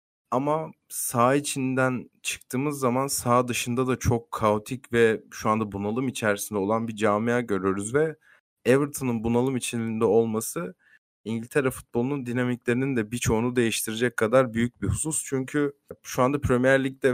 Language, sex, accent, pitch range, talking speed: Turkish, male, native, 115-135 Hz, 135 wpm